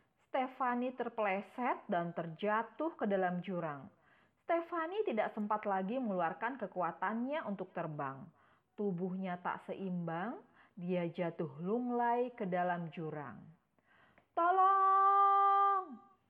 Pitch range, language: 180-235 Hz, Indonesian